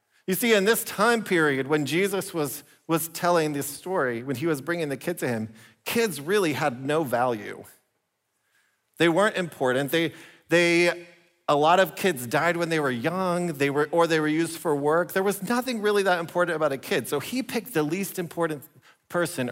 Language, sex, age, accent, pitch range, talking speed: English, male, 40-59, American, 150-215 Hz, 195 wpm